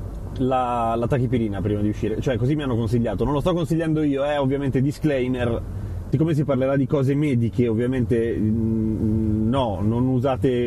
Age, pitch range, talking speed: 30-49, 105-150 Hz, 165 wpm